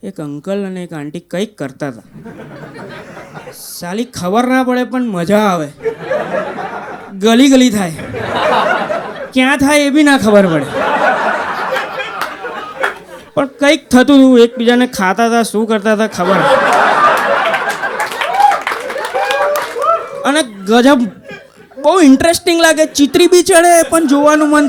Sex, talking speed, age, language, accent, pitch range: female, 105 wpm, 20-39, Gujarati, native, 185-280 Hz